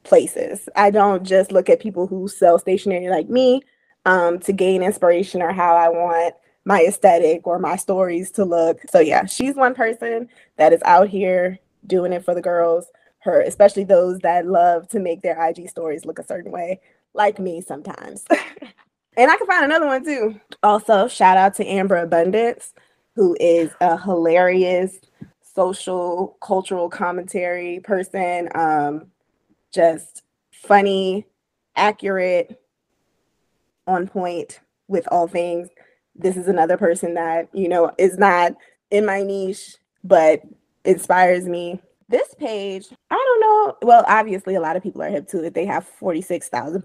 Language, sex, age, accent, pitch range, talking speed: English, female, 20-39, American, 175-215 Hz, 155 wpm